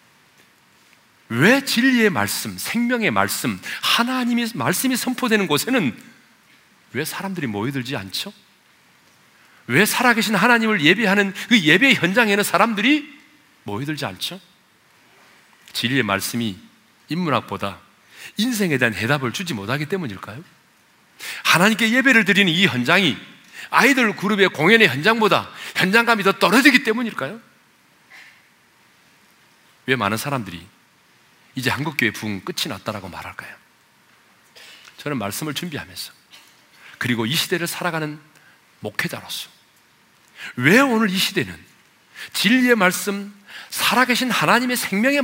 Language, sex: Korean, male